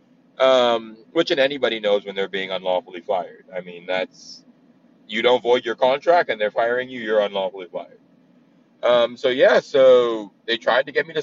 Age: 30-49